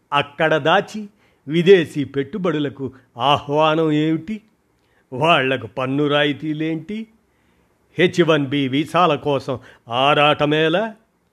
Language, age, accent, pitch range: Telugu, 50-69, native, 130-175 Hz